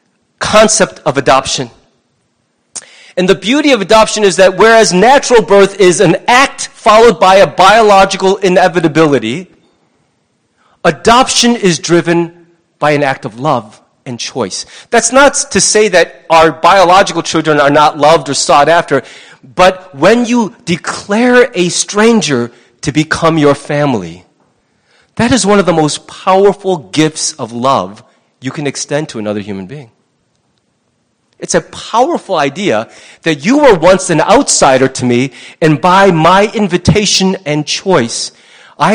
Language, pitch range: English, 145-210 Hz